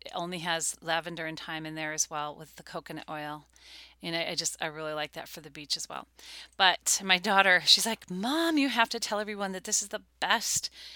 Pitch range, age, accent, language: 155-195 Hz, 30-49, American, English